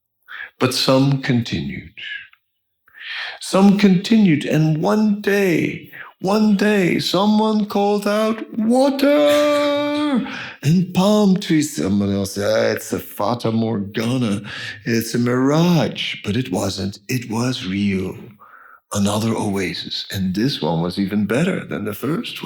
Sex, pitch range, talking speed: male, 115-180 Hz, 120 wpm